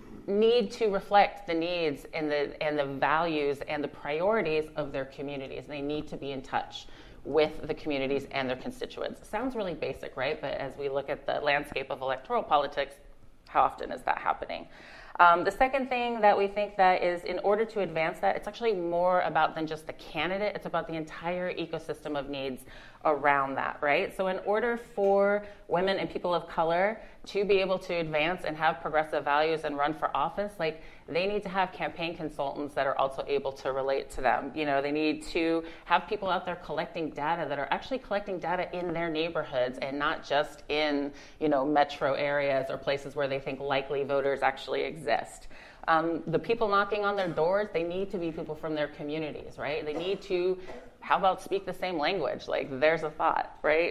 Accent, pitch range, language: American, 145-185 Hz, English